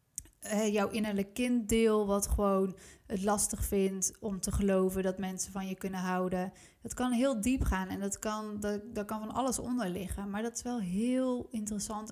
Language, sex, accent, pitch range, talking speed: Dutch, female, Dutch, 195-230 Hz, 190 wpm